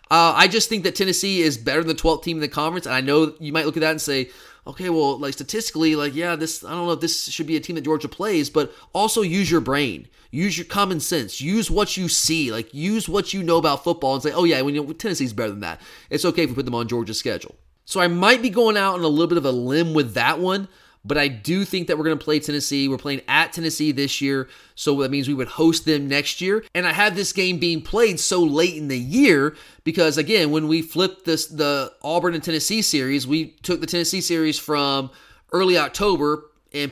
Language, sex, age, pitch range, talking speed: English, male, 30-49, 140-170 Hz, 250 wpm